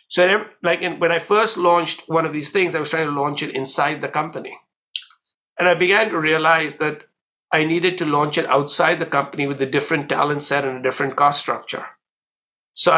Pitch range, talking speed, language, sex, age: 145-180 Hz, 205 wpm, English, male, 60-79